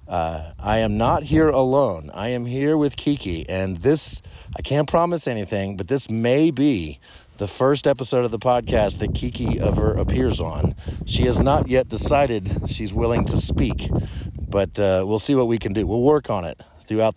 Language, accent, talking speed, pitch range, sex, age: English, American, 190 wpm, 95-135 Hz, male, 40-59